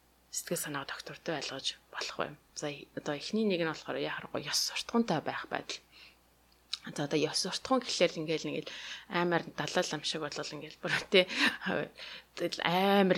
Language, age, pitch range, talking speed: English, 20-39, 150-185 Hz, 125 wpm